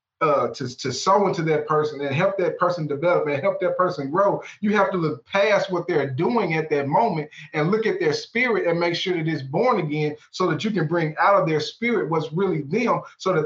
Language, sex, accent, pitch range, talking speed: English, male, American, 140-180 Hz, 240 wpm